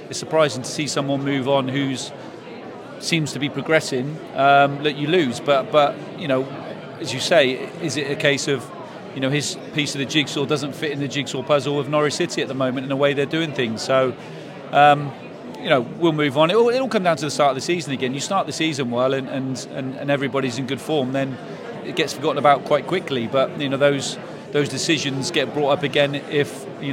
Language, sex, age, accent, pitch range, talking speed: English, male, 40-59, British, 135-150 Hz, 230 wpm